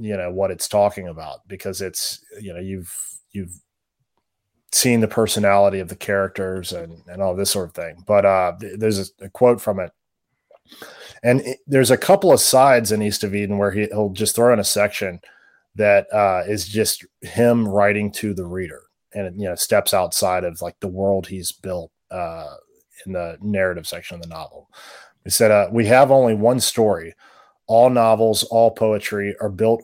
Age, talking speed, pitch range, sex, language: 30-49, 190 wpm, 100-110 Hz, male, English